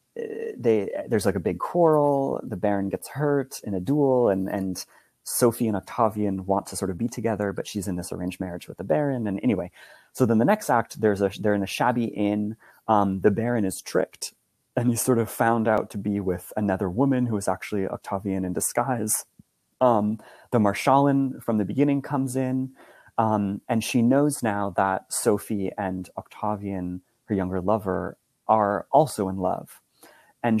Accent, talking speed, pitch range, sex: American, 185 wpm, 100-120 Hz, male